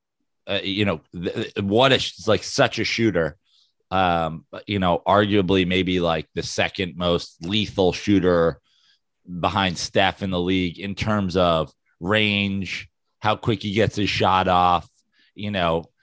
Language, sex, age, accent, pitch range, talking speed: English, male, 30-49, American, 90-115 Hz, 140 wpm